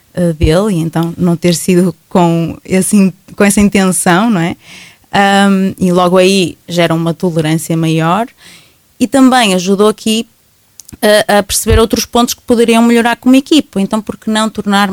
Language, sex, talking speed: Portuguese, female, 155 wpm